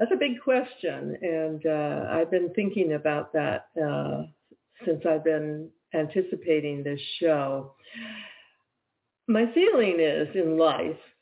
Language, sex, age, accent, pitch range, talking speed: English, female, 60-79, American, 155-195 Hz, 125 wpm